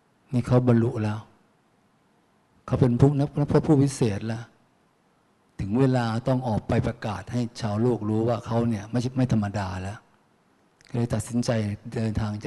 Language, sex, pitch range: Thai, male, 110-130 Hz